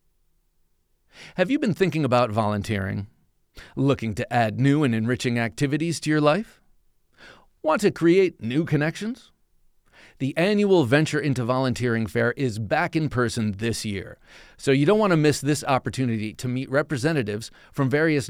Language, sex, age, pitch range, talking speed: English, male, 40-59, 115-160 Hz, 150 wpm